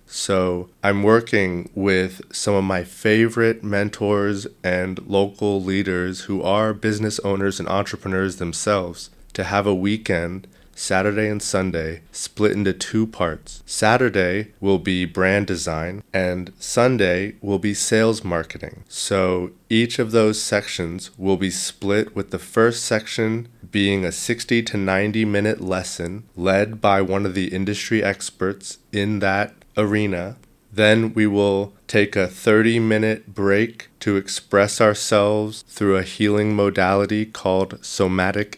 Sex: male